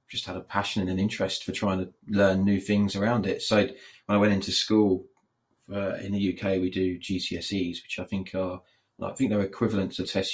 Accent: British